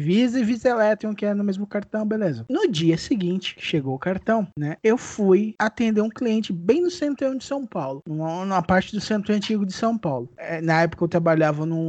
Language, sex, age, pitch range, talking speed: Portuguese, male, 20-39, 175-245 Hz, 205 wpm